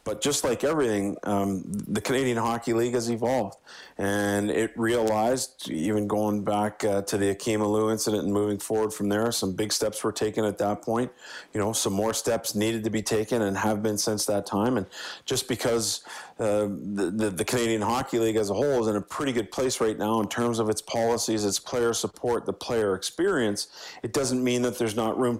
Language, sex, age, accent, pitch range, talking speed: English, male, 40-59, American, 105-120 Hz, 210 wpm